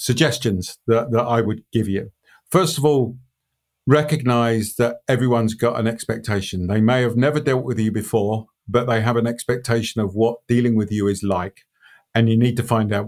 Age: 50-69